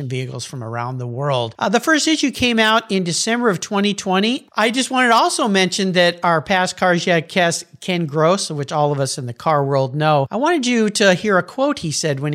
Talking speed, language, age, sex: 235 wpm, English, 50-69, male